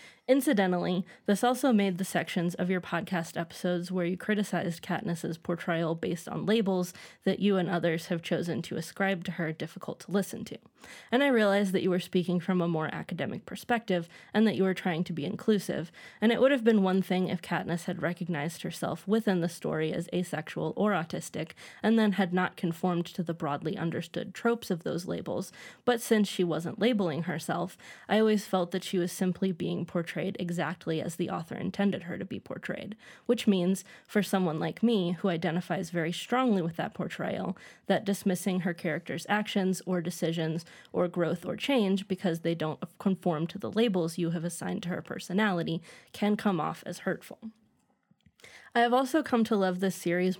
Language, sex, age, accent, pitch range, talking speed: English, female, 20-39, American, 175-205 Hz, 190 wpm